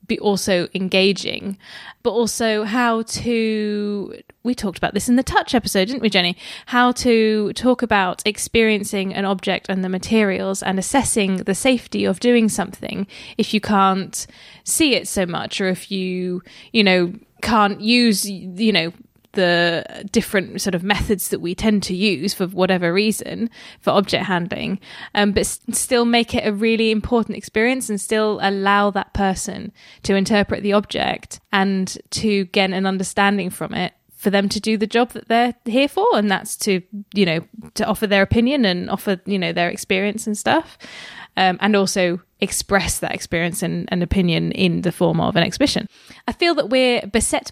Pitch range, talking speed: 190-225 Hz, 175 wpm